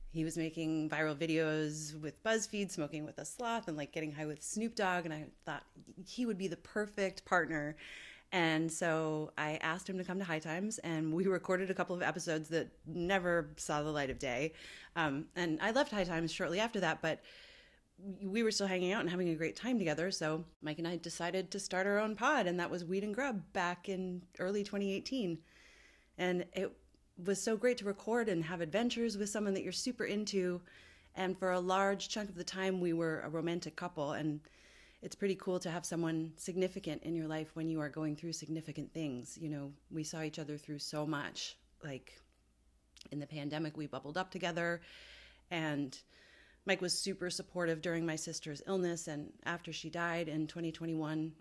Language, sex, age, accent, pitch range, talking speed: English, female, 30-49, American, 155-190 Hz, 200 wpm